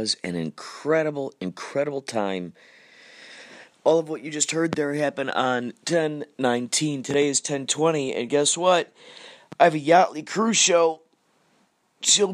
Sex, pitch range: male, 105-145 Hz